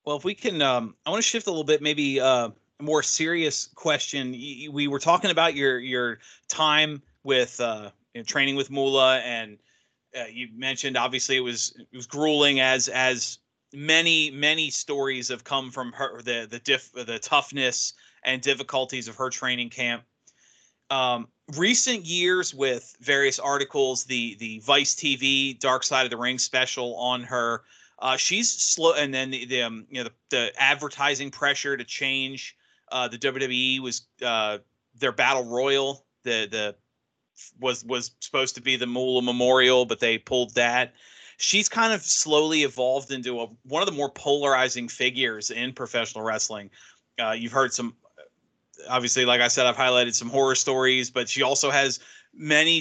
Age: 30-49